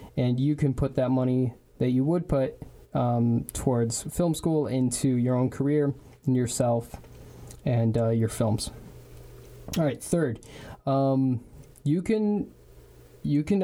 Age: 20-39